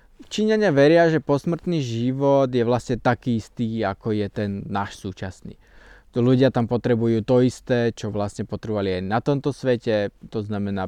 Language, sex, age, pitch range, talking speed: Slovak, male, 20-39, 105-125 Hz, 160 wpm